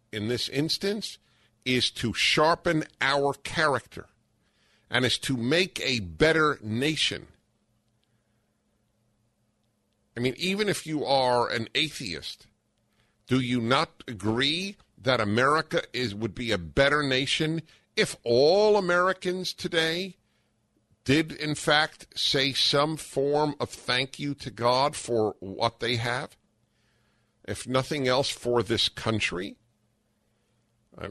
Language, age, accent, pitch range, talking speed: English, 50-69, American, 110-135 Hz, 120 wpm